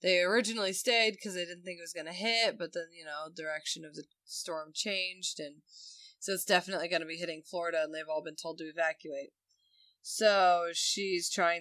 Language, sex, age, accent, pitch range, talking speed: English, female, 20-39, American, 150-185 Hz, 205 wpm